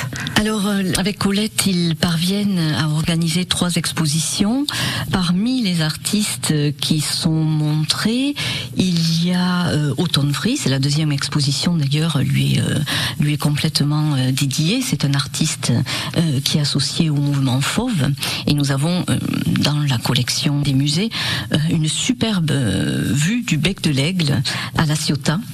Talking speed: 150 wpm